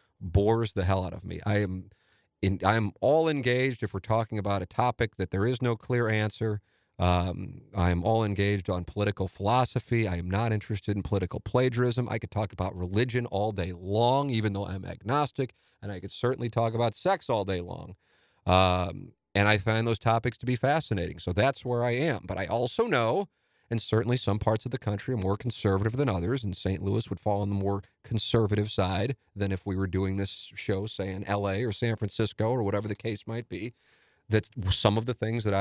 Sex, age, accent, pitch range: male, 40-59, American, 95-120 Hz